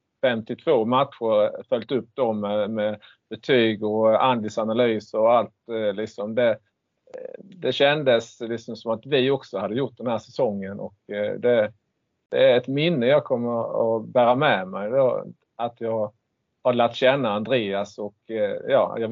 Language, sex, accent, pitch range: Swedish, male, Norwegian, 110-135 Hz